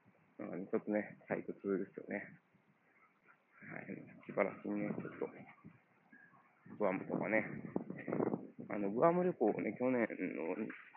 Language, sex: Japanese, male